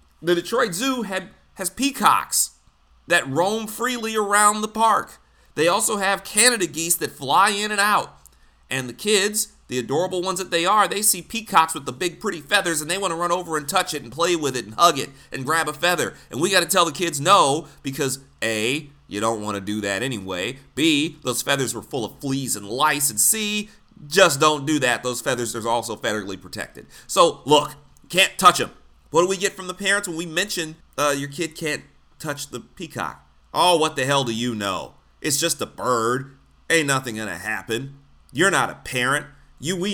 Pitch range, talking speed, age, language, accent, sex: 130-190 Hz, 210 wpm, 30-49, English, American, male